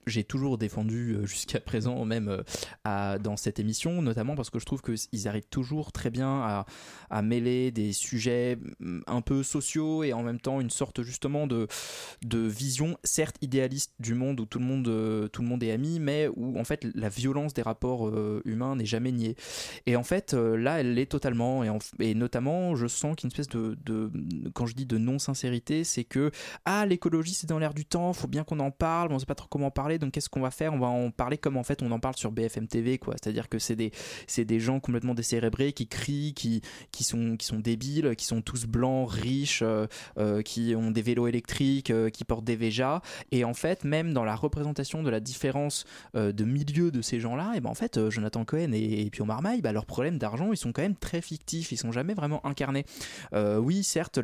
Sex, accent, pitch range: male, French, 115-145 Hz